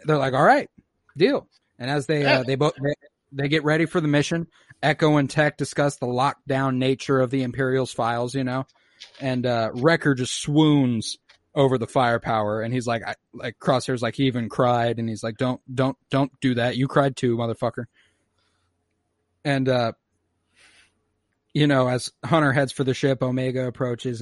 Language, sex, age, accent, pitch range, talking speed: English, male, 30-49, American, 120-155 Hz, 180 wpm